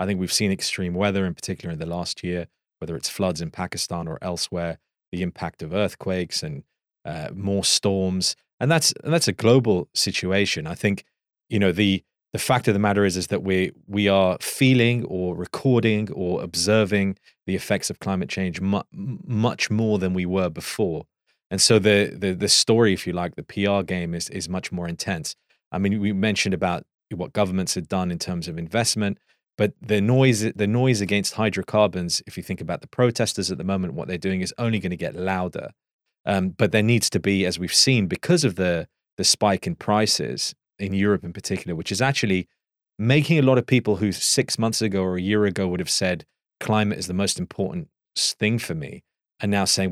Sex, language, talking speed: male, English, 205 wpm